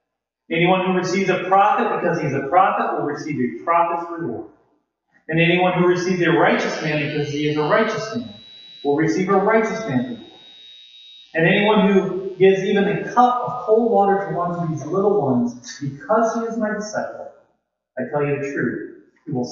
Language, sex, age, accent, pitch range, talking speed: English, male, 30-49, American, 140-195 Hz, 185 wpm